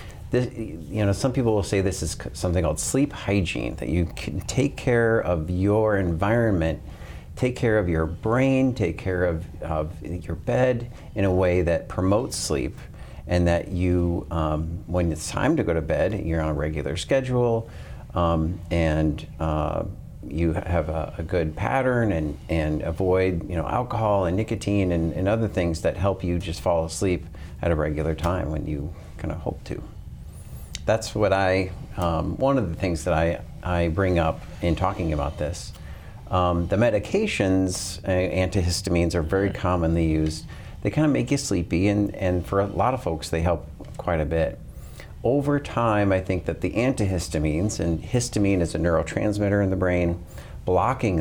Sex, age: male, 40-59